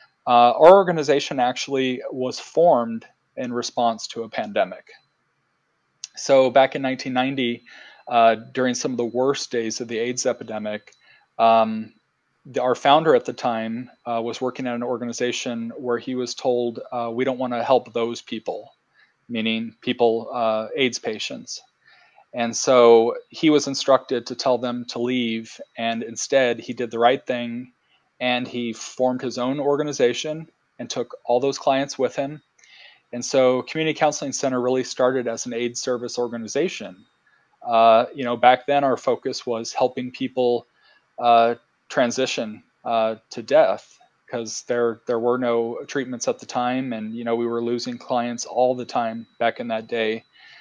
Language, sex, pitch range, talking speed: English, male, 115-130 Hz, 160 wpm